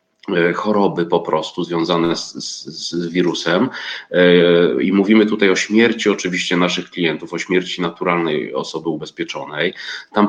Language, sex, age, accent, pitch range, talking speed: Polish, male, 30-49, native, 90-105 Hz, 130 wpm